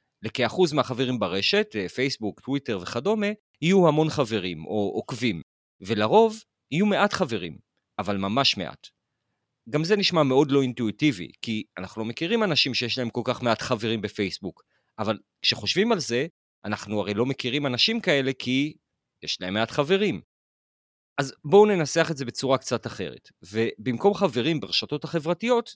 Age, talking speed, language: 40-59, 145 wpm, Hebrew